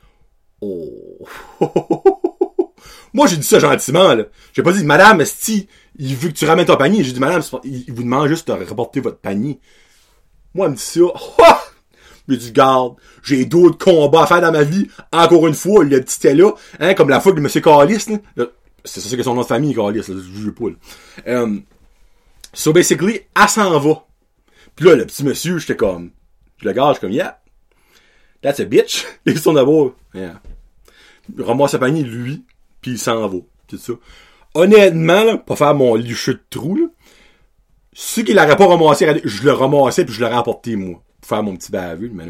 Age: 30-49